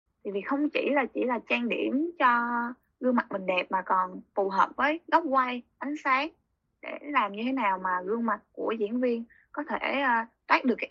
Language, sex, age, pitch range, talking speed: Vietnamese, female, 20-39, 210-285 Hz, 210 wpm